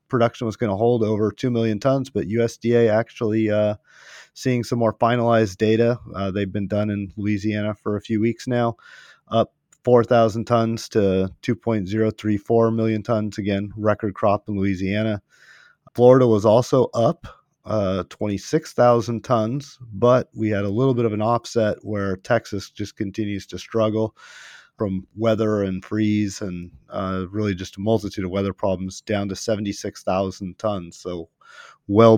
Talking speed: 155 wpm